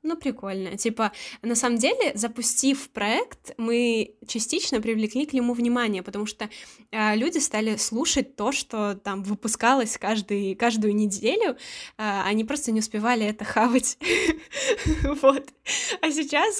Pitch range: 215-260 Hz